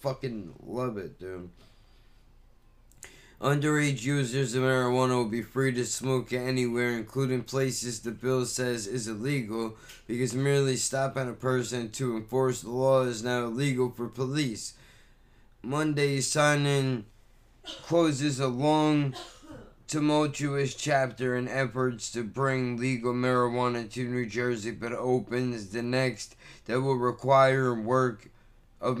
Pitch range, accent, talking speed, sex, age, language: 120-135 Hz, American, 125 wpm, male, 20-39, English